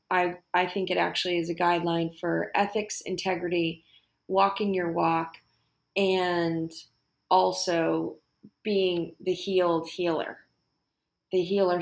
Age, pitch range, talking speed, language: 30-49, 170-195 Hz, 110 wpm, English